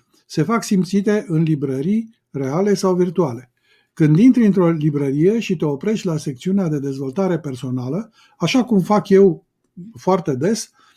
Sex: male